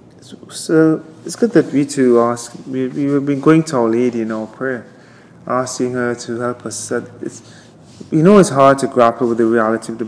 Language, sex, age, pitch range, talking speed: English, male, 30-49, 120-140 Hz, 200 wpm